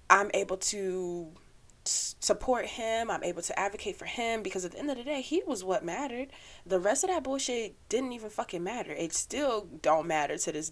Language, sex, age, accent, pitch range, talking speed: English, female, 20-39, American, 185-225 Hz, 205 wpm